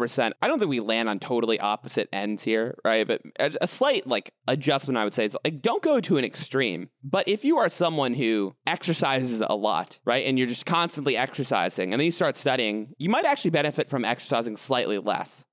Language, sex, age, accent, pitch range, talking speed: English, male, 30-49, American, 115-155 Hz, 210 wpm